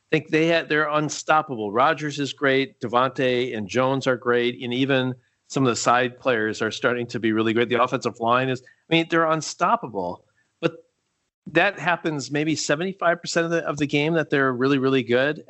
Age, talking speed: 40-59, 195 wpm